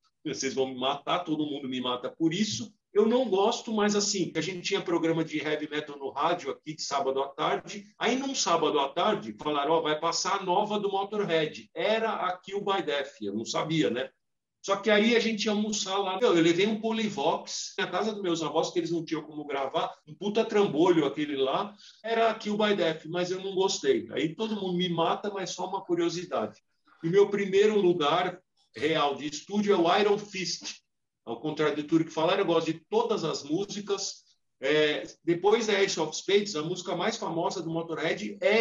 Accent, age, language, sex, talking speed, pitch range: Brazilian, 50-69, Portuguese, male, 210 wpm, 160-205 Hz